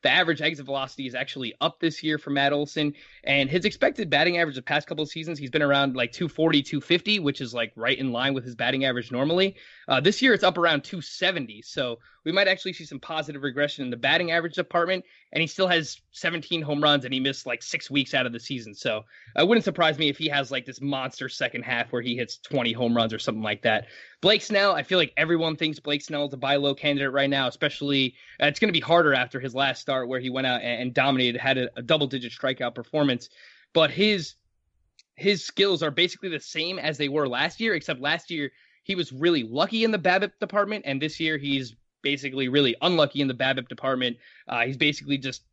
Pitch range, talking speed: 130-165 Hz, 235 wpm